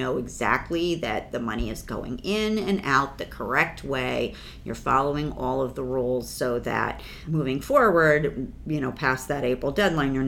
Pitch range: 135-175 Hz